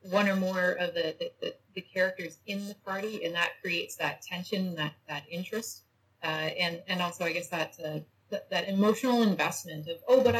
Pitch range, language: 155-200 Hz, English